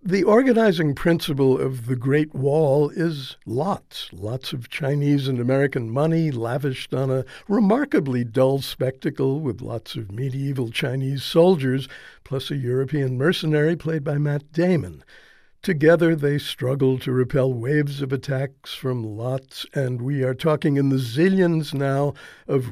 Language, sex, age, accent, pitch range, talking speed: English, male, 60-79, American, 130-165 Hz, 145 wpm